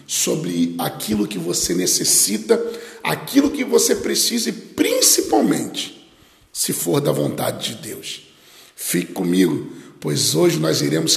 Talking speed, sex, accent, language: 125 wpm, male, Brazilian, Portuguese